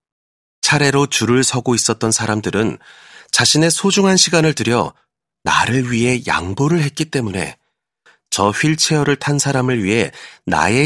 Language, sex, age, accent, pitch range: Korean, male, 40-59, native, 95-150 Hz